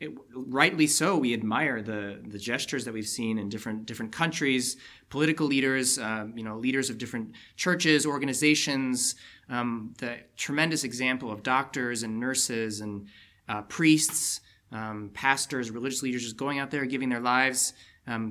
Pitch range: 115-150 Hz